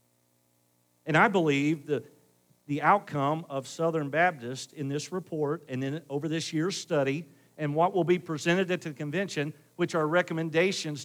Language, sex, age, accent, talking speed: English, male, 50-69, American, 160 wpm